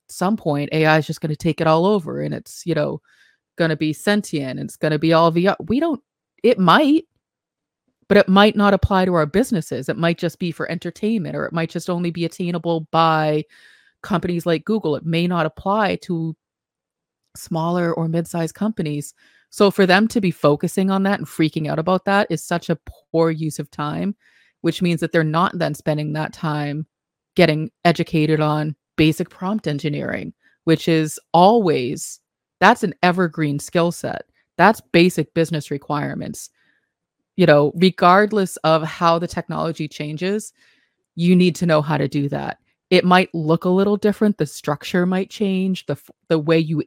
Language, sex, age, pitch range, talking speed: English, female, 30-49, 155-185 Hz, 180 wpm